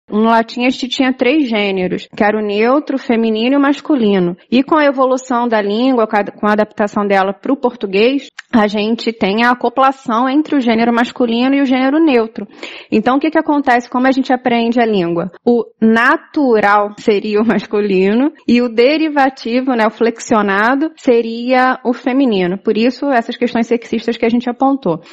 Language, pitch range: Portuguese, 220-275 Hz